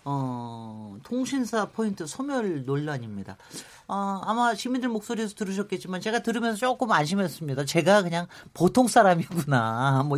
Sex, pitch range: male, 145-215 Hz